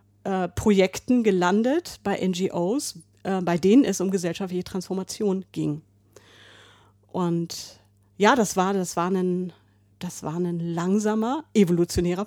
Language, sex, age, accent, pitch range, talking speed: German, female, 40-59, German, 170-205 Hz, 105 wpm